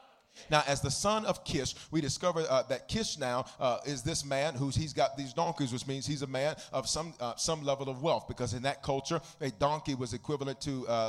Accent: American